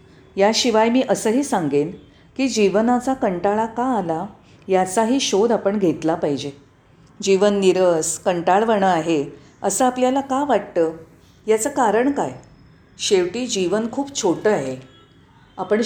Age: 40-59